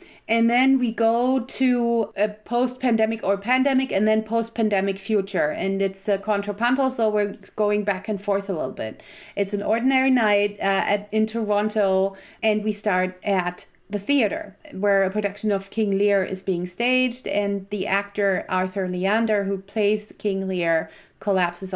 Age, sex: 30-49, female